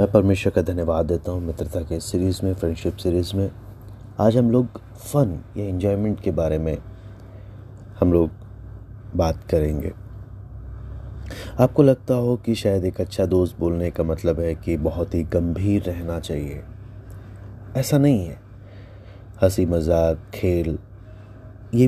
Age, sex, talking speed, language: 30-49, male, 140 wpm, Hindi